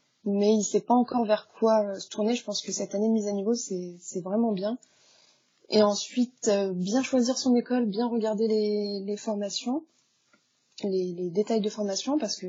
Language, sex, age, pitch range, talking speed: French, female, 20-39, 195-220 Hz, 200 wpm